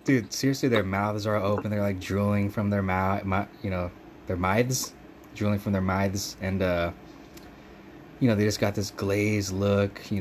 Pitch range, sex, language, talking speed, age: 95-110 Hz, male, English, 195 wpm, 20-39